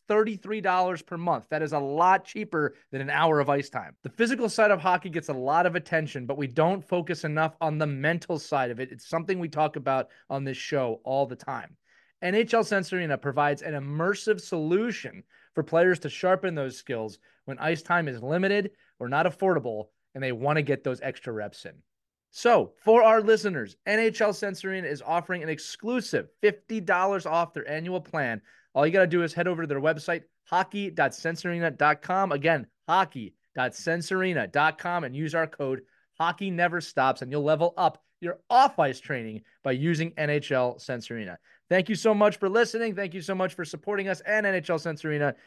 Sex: male